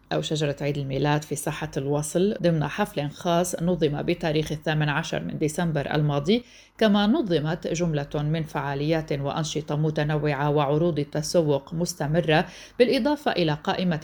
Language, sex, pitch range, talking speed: Arabic, female, 150-180 Hz, 130 wpm